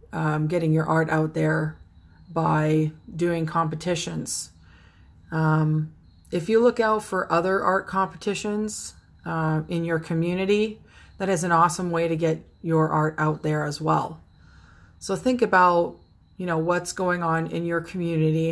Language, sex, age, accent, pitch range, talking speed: English, female, 30-49, American, 155-180 Hz, 150 wpm